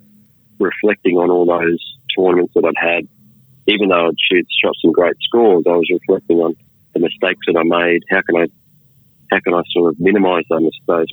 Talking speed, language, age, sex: 185 wpm, English, 30-49, male